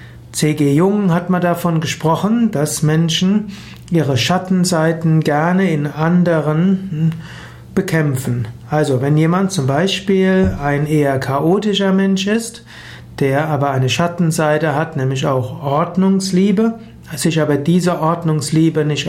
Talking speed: 115 wpm